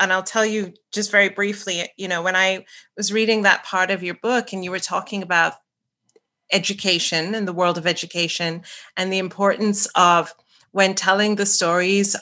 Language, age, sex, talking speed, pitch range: English, 30-49, female, 180 wpm, 175-205 Hz